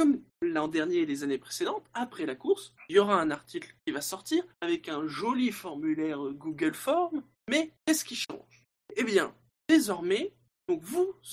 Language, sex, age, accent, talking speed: French, male, 20-39, French, 175 wpm